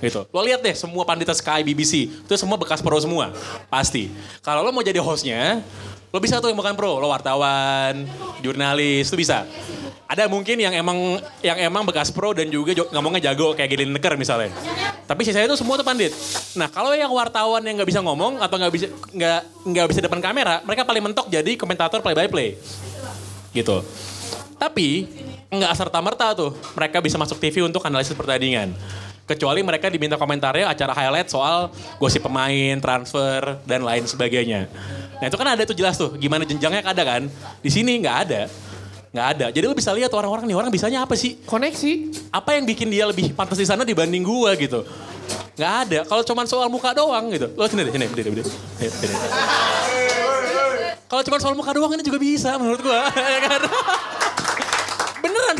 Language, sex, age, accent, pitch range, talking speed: Indonesian, male, 20-39, native, 135-225 Hz, 175 wpm